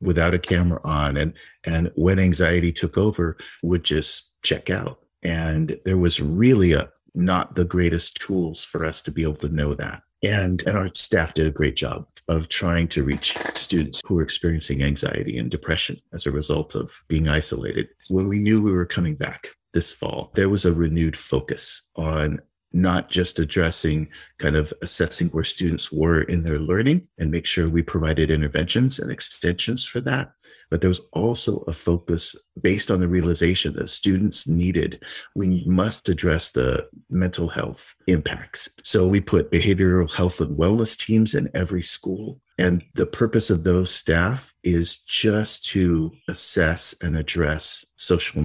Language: English